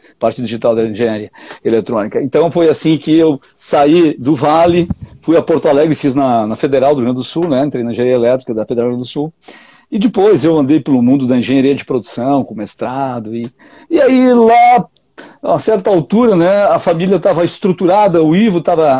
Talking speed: 200 wpm